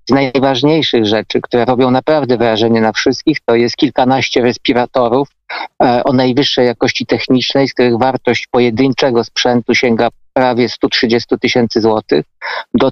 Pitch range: 120-150 Hz